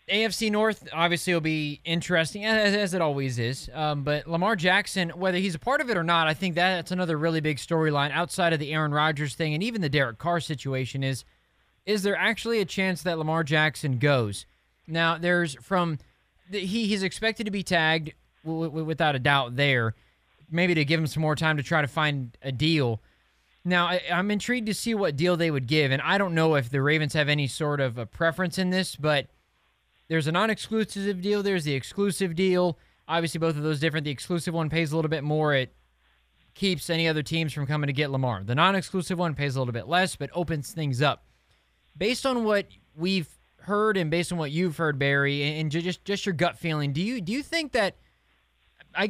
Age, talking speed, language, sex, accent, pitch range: 20-39, 215 wpm, English, male, American, 145-185 Hz